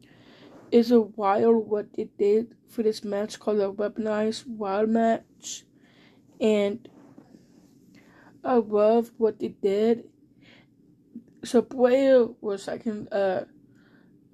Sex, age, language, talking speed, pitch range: female, 20-39, English, 110 wpm, 210-240 Hz